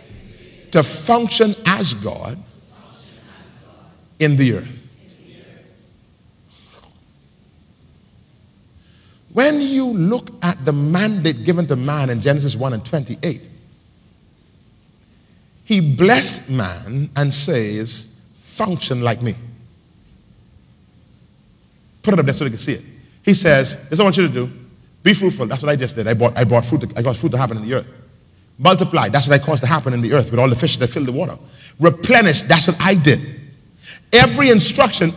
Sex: male